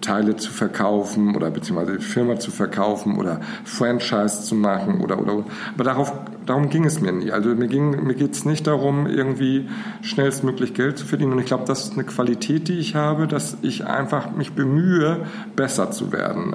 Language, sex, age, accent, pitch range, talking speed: German, male, 50-69, German, 115-155 Hz, 190 wpm